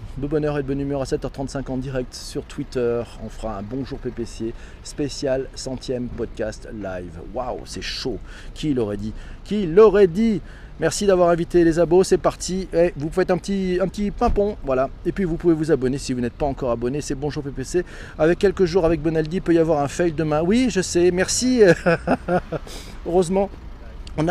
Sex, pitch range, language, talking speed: male, 130-185 Hz, French, 195 wpm